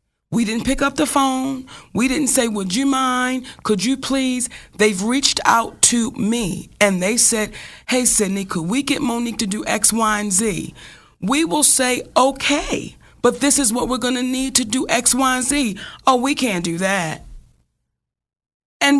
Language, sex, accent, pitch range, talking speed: English, female, American, 220-270 Hz, 185 wpm